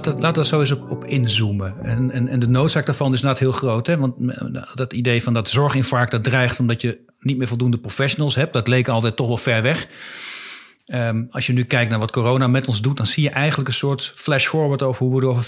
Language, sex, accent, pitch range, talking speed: Dutch, male, Dutch, 120-140 Hz, 245 wpm